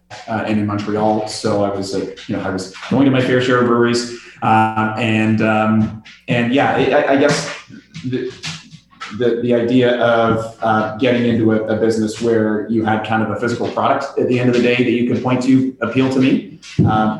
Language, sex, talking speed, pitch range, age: English, male, 210 wpm, 105-115 Hz, 30-49